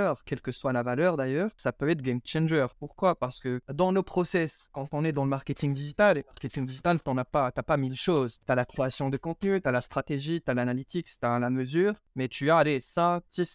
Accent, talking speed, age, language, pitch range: French, 250 wpm, 20-39, French, 130-165 Hz